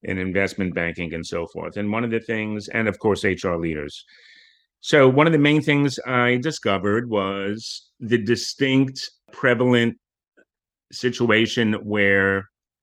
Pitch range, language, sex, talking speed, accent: 90-115 Hz, English, male, 140 wpm, American